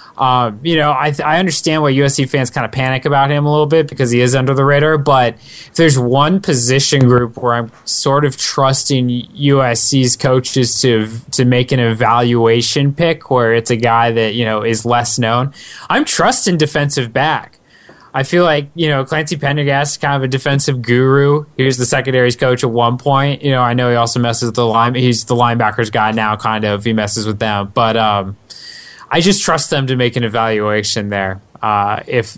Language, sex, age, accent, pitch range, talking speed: English, male, 20-39, American, 110-140 Hz, 210 wpm